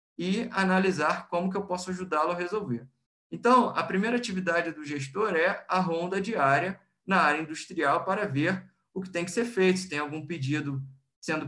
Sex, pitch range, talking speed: male, 135-175 Hz, 185 wpm